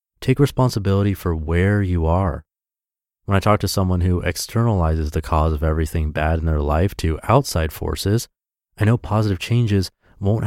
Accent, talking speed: American, 165 wpm